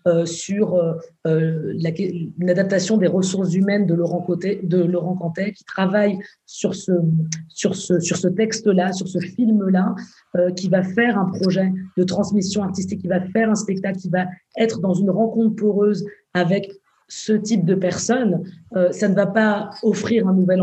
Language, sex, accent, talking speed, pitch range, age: French, female, French, 170 wpm, 185-220 Hz, 20-39